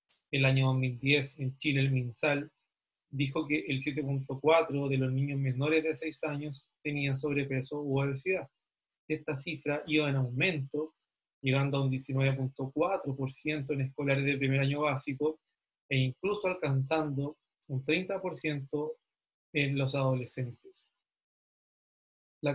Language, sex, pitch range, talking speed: Spanish, male, 135-160 Hz, 120 wpm